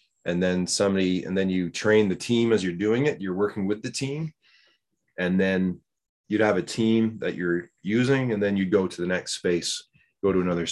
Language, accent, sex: English, American, male